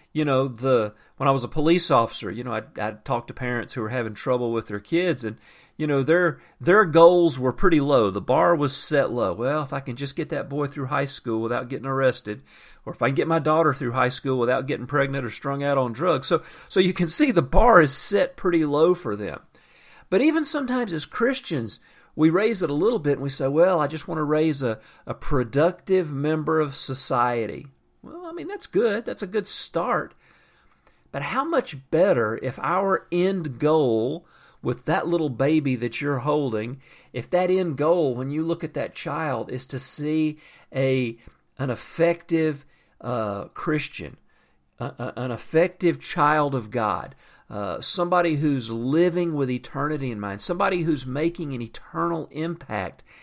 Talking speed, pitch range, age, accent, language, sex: 190 wpm, 125-165 Hz, 40-59, American, English, male